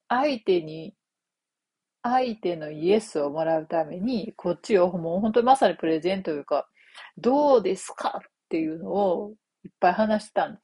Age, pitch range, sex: 40-59, 165-220 Hz, female